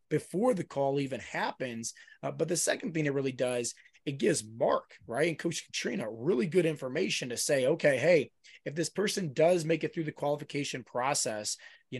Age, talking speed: 20-39, 190 wpm